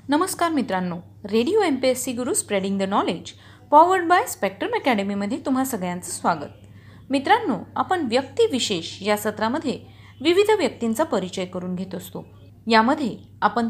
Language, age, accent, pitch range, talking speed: Marathi, 30-49, native, 210-300 Hz, 135 wpm